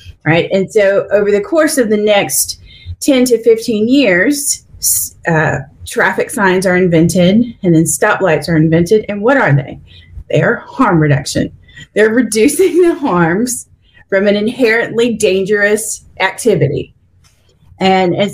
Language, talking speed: English, 135 wpm